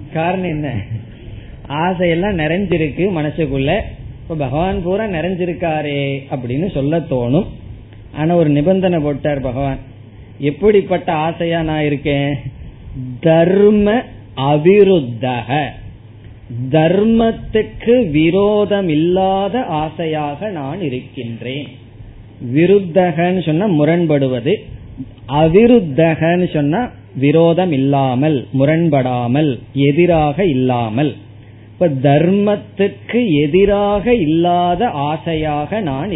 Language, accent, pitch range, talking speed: Tamil, native, 125-175 Hz, 65 wpm